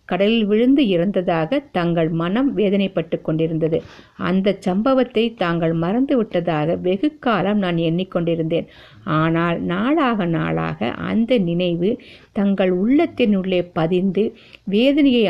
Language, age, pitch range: Tamil, 50-69, 170-230 Hz